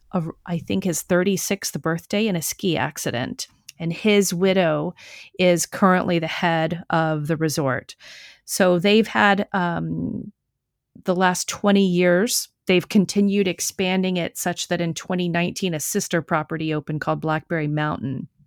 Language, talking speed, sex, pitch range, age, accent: English, 140 wpm, female, 170-200 Hz, 40-59, American